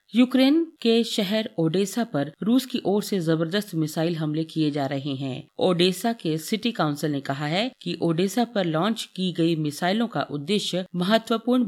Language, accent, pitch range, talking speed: Hindi, native, 160-215 Hz, 170 wpm